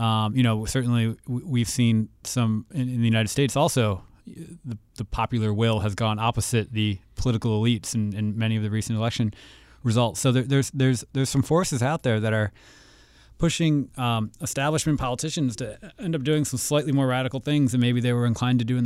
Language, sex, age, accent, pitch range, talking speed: English, male, 20-39, American, 110-125 Hz, 200 wpm